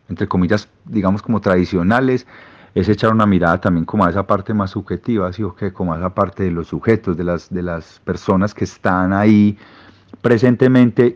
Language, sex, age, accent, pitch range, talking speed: Spanish, male, 40-59, Colombian, 90-110 Hz, 190 wpm